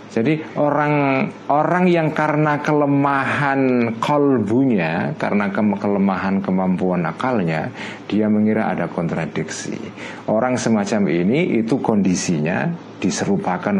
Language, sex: Indonesian, male